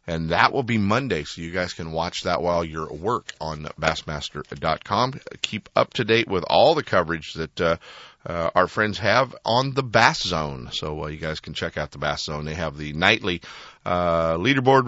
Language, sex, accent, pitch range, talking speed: English, male, American, 85-130 Hz, 205 wpm